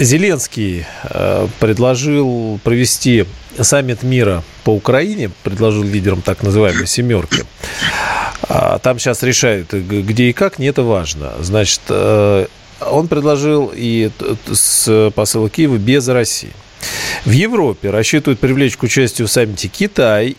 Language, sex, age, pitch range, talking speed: Russian, male, 40-59, 100-130 Hz, 120 wpm